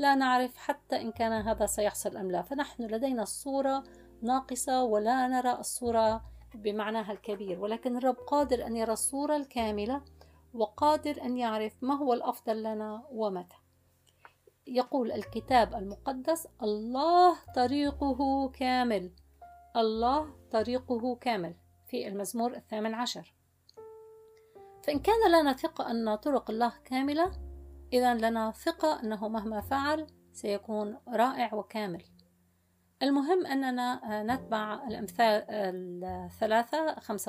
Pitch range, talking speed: 210-280 Hz, 110 wpm